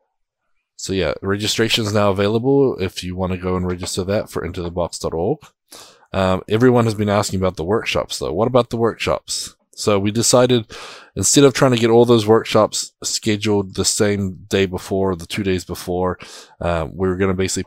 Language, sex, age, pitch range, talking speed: English, male, 20-39, 90-105 Hz, 195 wpm